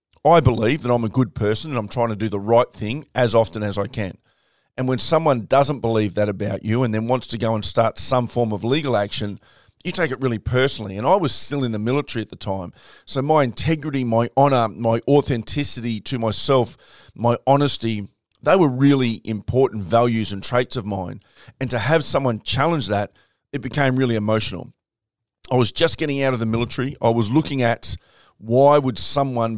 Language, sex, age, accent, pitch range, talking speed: English, male, 40-59, Australian, 110-135 Hz, 205 wpm